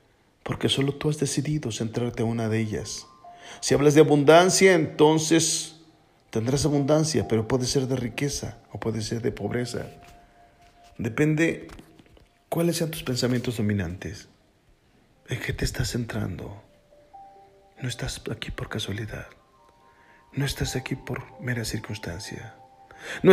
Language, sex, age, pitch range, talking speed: Spanish, male, 40-59, 110-150 Hz, 130 wpm